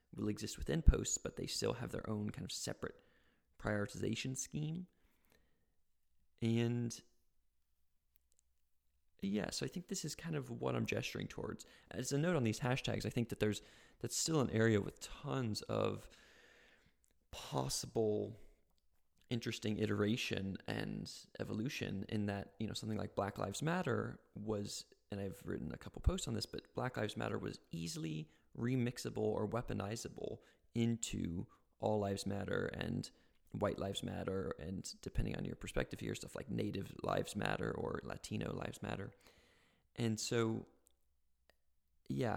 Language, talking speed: English, 145 wpm